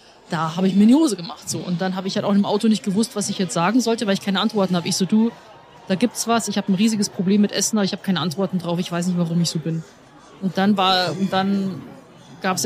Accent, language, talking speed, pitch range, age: German, German, 285 wpm, 190-225 Hz, 30-49